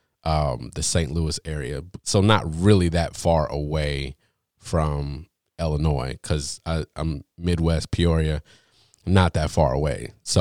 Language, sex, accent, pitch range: English, male, American, 80-100 Hz